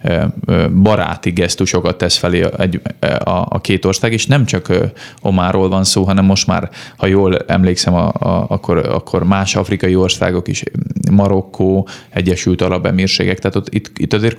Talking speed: 125 wpm